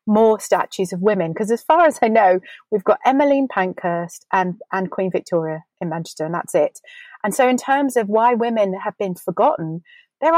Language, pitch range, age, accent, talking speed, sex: English, 195-250 Hz, 30-49, British, 210 wpm, female